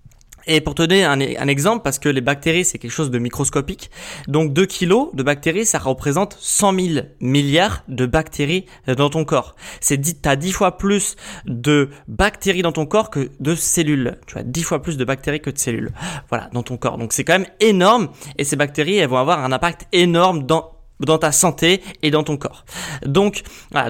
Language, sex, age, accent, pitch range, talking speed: French, male, 20-39, French, 140-175 Hz, 210 wpm